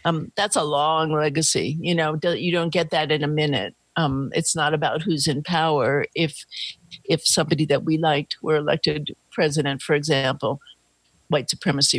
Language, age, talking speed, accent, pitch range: English, 50-69, 170 wpm, American, 140-165 Hz